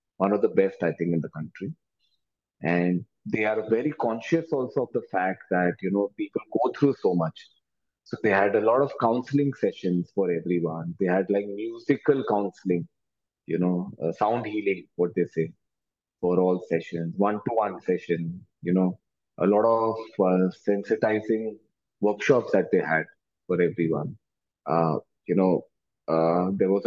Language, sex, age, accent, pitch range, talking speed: English, male, 30-49, Indian, 90-120 Hz, 165 wpm